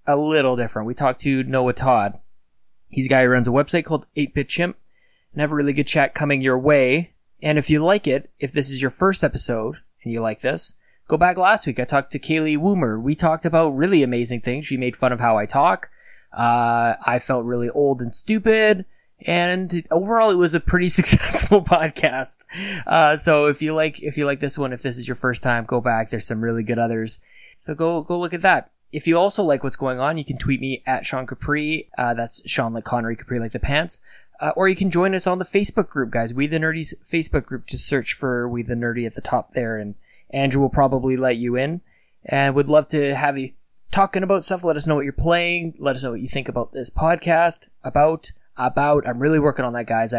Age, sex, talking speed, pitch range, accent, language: 20-39, male, 235 wpm, 125-160 Hz, American, English